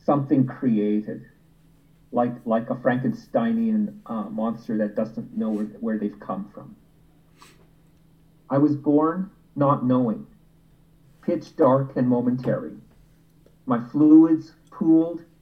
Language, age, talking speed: English, 40-59, 105 wpm